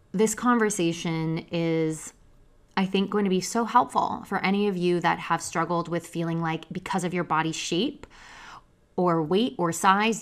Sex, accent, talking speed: female, American, 170 wpm